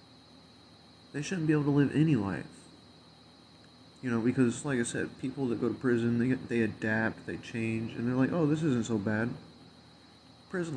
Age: 20-39